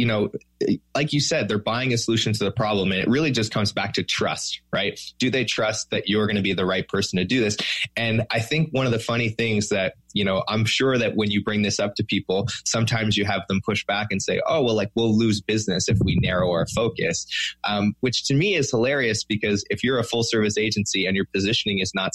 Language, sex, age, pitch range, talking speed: English, male, 20-39, 95-115 Hz, 250 wpm